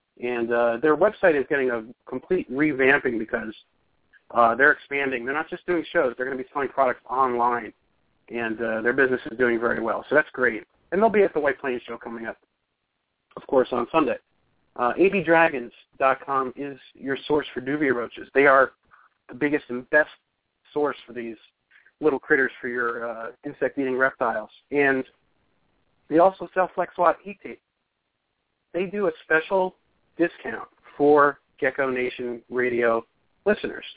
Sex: male